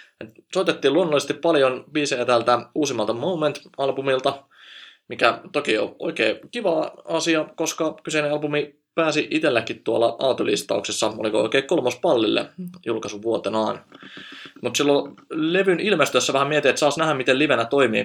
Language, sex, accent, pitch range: Finnish, male, native, 115-155 Hz